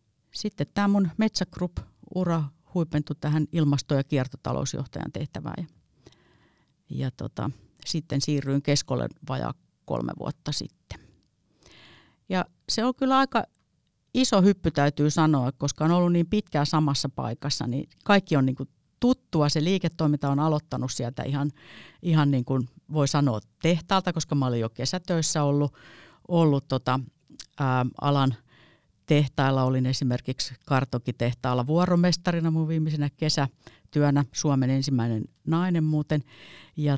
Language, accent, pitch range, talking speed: Finnish, native, 130-170 Hz, 125 wpm